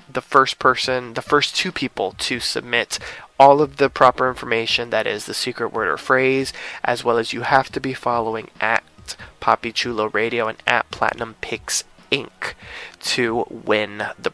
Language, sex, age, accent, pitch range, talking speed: English, male, 20-39, American, 115-135 Hz, 170 wpm